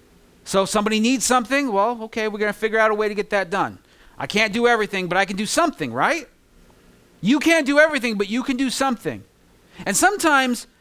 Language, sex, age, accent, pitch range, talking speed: English, male, 40-59, American, 160-235 Hz, 205 wpm